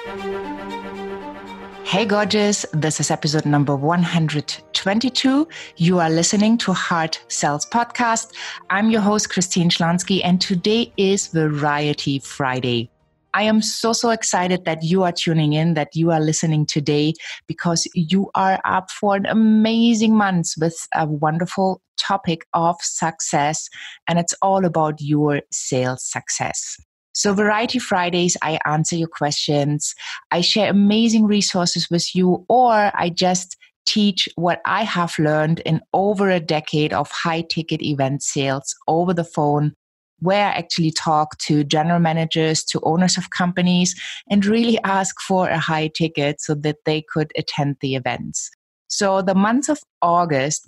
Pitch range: 155-195 Hz